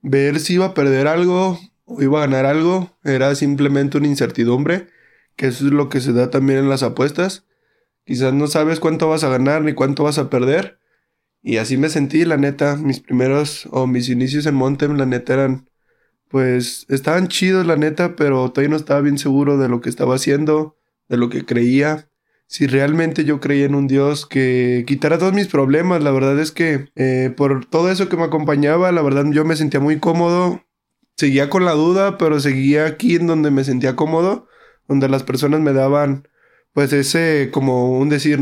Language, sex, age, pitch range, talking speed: Spanish, male, 20-39, 135-160 Hz, 200 wpm